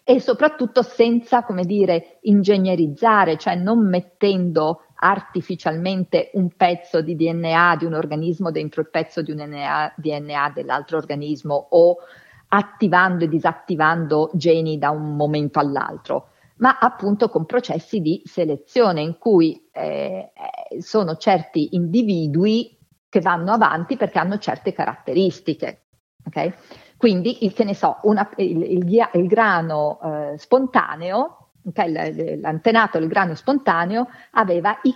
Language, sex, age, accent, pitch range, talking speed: Italian, female, 50-69, native, 160-225 Hz, 125 wpm